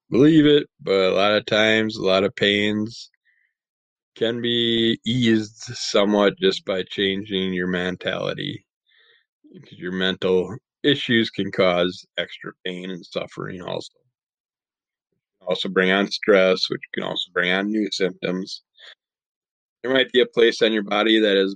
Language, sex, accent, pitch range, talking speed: English, male, American, 100-125 Hz, 150 wpm